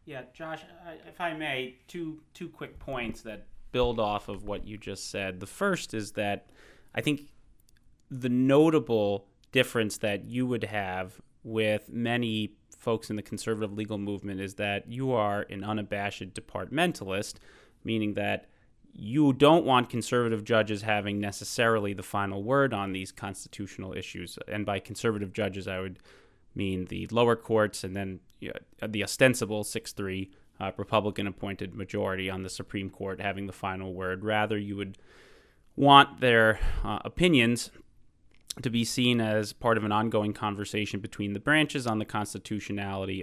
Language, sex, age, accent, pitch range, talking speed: English, male, 30-49, American, 100-115 Hz, 150 wpm